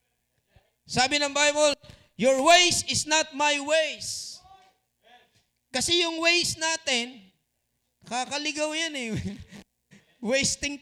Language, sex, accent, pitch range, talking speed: Filipino, male, native, 220-305 Hz, 95 wpm